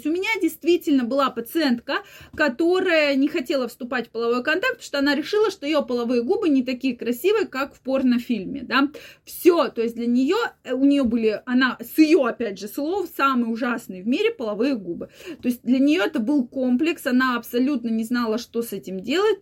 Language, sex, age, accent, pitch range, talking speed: Russian, female, 20-39, native, 230-285 Hz, 190 wpm